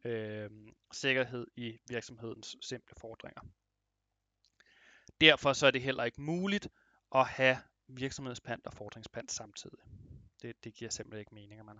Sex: male